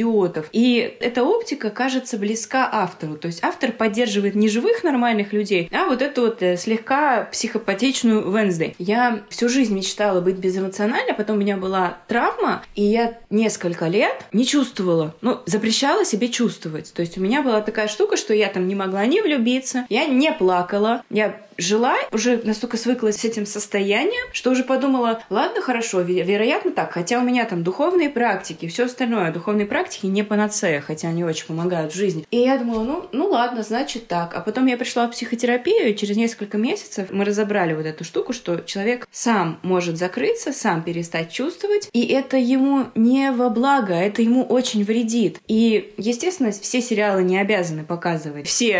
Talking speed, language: 175 wpm, Russian